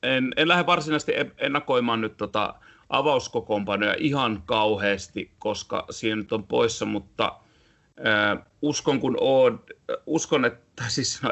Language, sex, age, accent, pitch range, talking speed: Finnish, male, 30-49, native, 100-115 Hz, 135 wpm